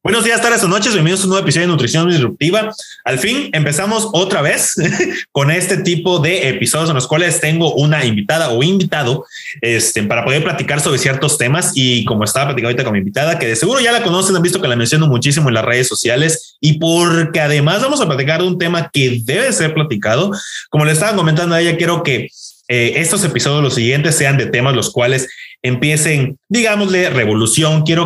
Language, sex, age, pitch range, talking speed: Spanish, male, 20-39, 125-170 Hz, 210 wpm